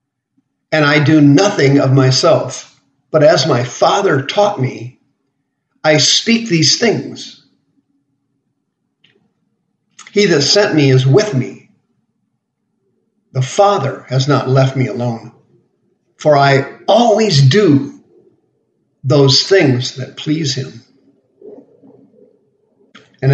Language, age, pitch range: English, 50-69, 130-155 Hz